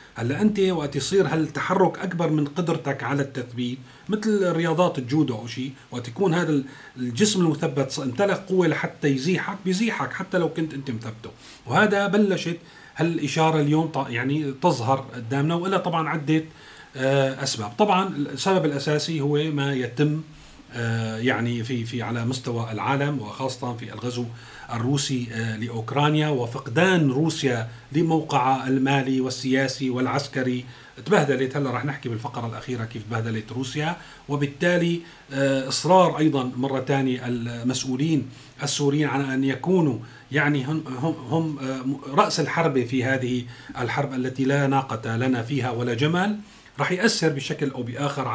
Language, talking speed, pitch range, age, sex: Arabic, 125 wpm, 130-160 Hz, 40-59, male